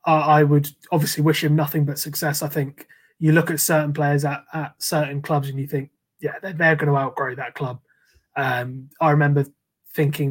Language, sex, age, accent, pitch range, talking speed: English, male, 20-39, British, 145-160 Hz, 200 wpm